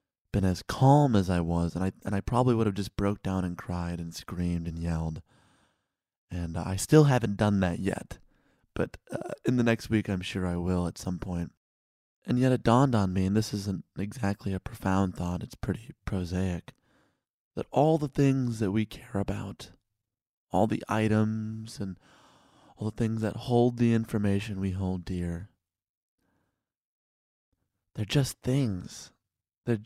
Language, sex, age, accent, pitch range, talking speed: English, male, 30-49, American, 95-125 Hz, 170 wpm